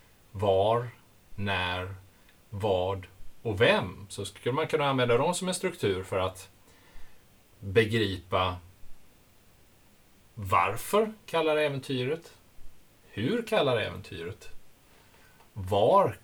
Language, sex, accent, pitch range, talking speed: Swedish, male, Norwegian, 100-125 Hz, 90 wpm